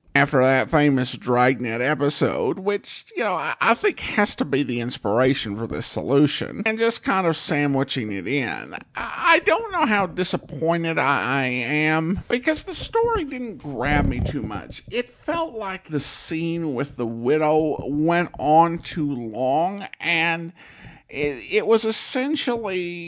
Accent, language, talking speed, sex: American, English, 150 wpm, male